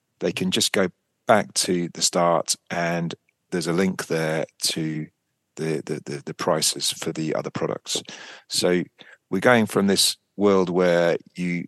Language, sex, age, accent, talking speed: English, male, 40-59, British, 160 wpm